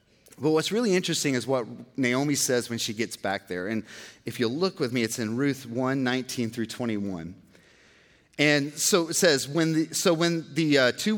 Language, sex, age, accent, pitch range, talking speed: English, male, 40-59, American, 110-145 Hz, 200 wpm